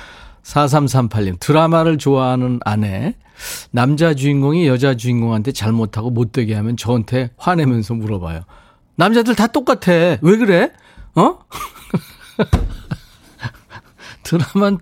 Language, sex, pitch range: Korean, male, 115-160 Hz